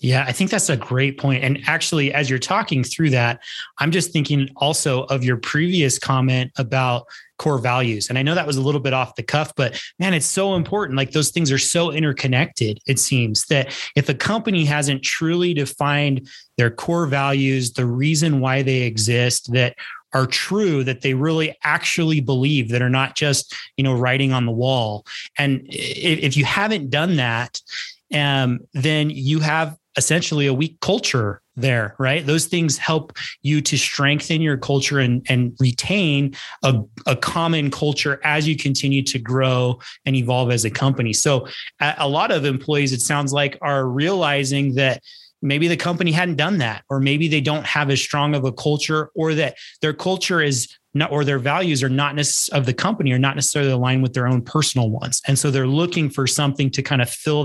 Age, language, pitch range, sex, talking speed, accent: 30-49, English, 130-155 Hz, male, 190 wpm, American